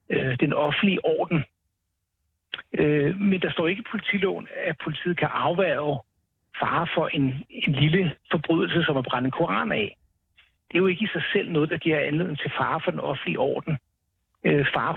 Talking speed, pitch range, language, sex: 170 wpm, 140-190 Hz, Danish, male